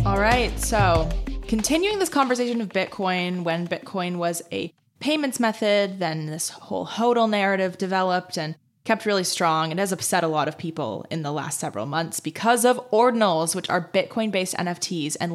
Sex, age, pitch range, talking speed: female, 20-39, 160-195 Hz, 170 wpm